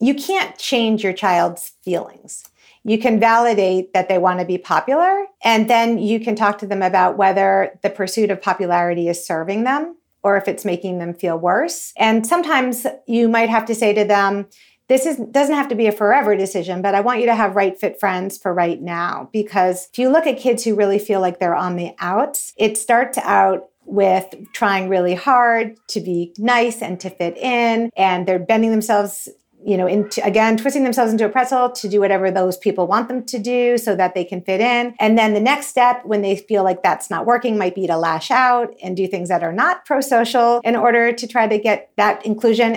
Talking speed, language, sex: 215 wpm, English, female